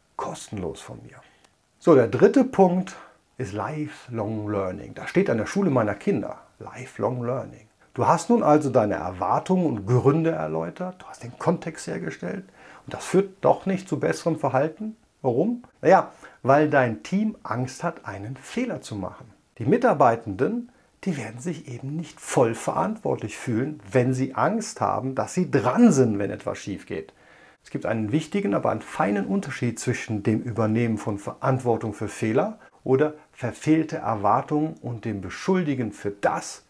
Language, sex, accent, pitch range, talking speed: German, male, German, 120-165 Hz, 160 wpm